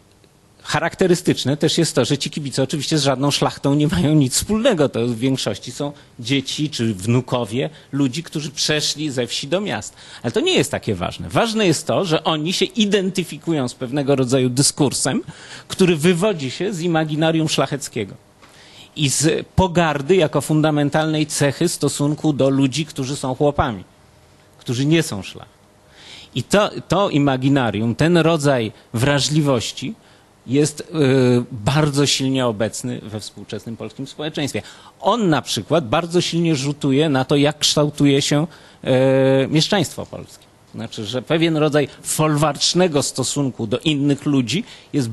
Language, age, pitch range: Polish, 30-49, 130-155 Hz